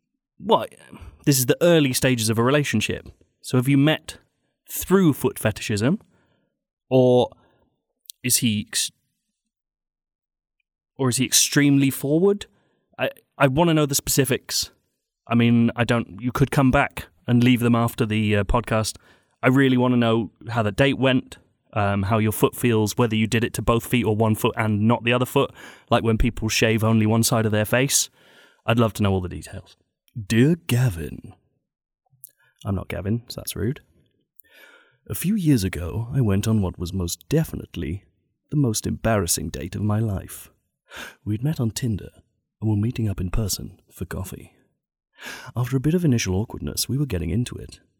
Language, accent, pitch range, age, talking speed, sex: English, British, 100-130 Hz, 30-49, 180 wpm, male